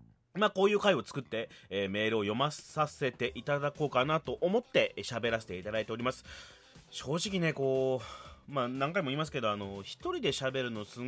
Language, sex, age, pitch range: Japanese, male, 30-49, 120-190 Hz